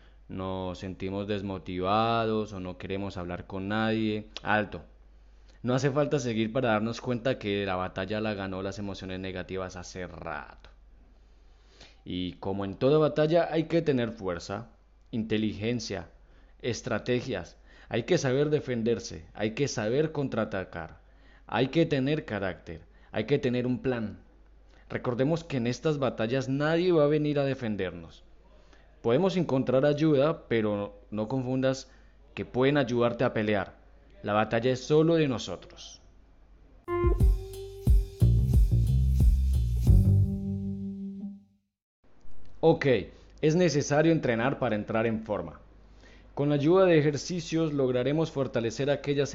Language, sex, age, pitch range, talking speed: Spanish, male, 20-39, 95-135 Hz, 120 wpm